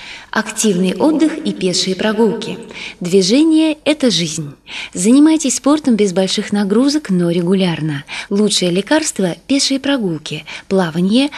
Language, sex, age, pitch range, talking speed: Russian, female, 20-39, 180-250 Hz, 105 wpm